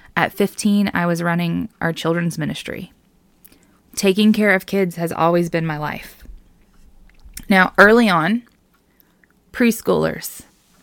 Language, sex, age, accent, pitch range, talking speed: English, female, 20-39, American, 170-210 Hz, 115 wpm